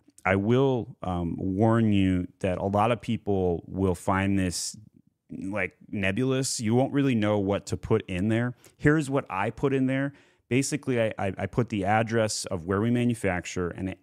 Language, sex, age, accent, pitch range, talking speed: English, male, 30-49, American, 90-115 Hz, 180 wpm